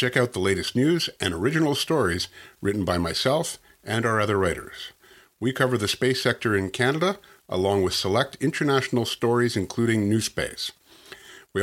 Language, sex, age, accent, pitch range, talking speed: English, male, 50-69, American, 100-135 Hz, 155 wpm